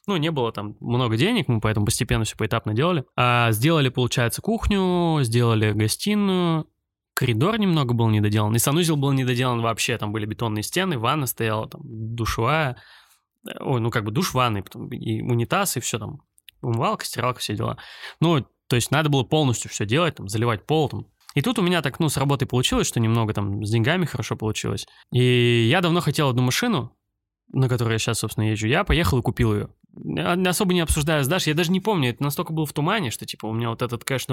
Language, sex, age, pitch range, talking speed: Russian, male, 20-39, 115-150 Hz, 205 wpm